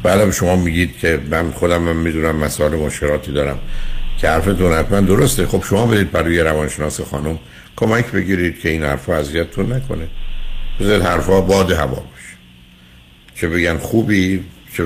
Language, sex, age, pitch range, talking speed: Persian, male, 60-79, 70-90 Hz, 150 wpm